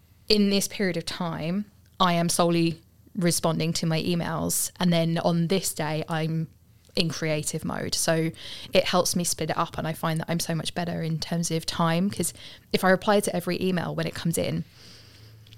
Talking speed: 195 wpm